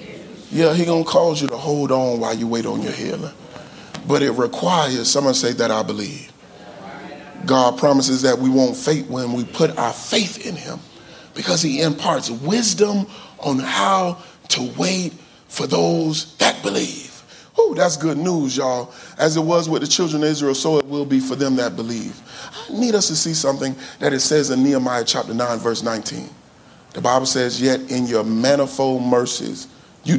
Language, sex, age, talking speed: English, male, 30-49, 185 wpm